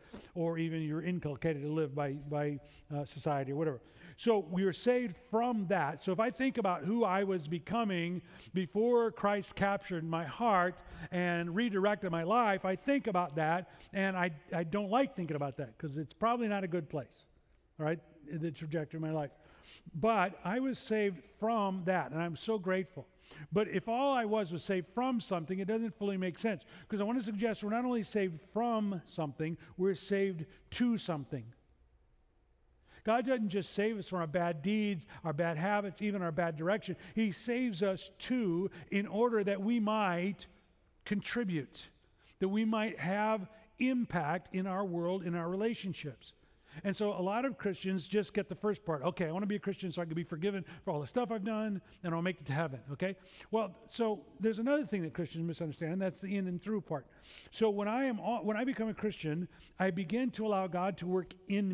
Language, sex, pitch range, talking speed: English, male, 165-210 Hz, 200 wpm